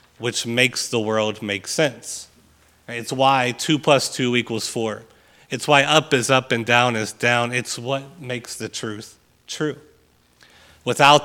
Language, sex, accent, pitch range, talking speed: English, male, American, 105-125 Hz, 155 wpm